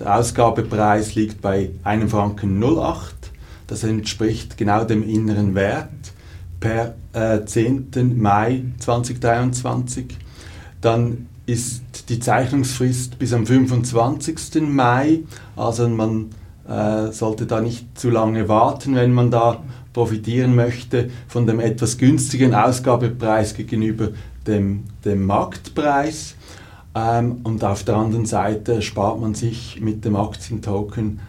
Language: German